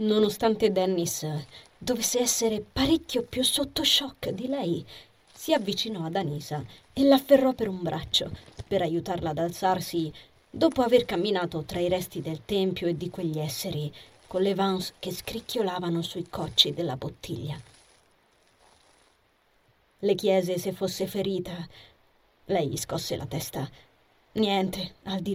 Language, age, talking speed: Italian, 30-49, 135 wpm